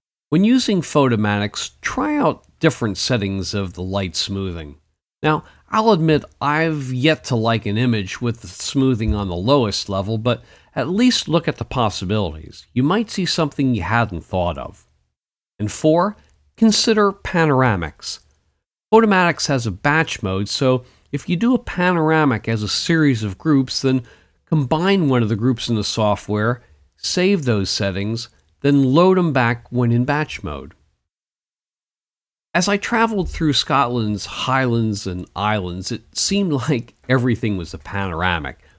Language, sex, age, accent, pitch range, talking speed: English, male, 50-69, American, 100-150 Hz, 150 wpm